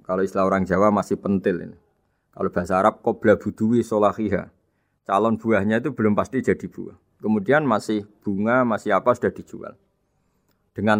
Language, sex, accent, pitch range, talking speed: Indonesian, male, native, 100-120 Hz, 155 wpm